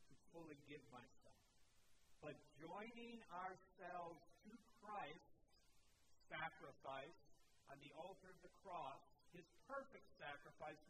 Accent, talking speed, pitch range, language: American, 100 wpm, 130-180 Hz, English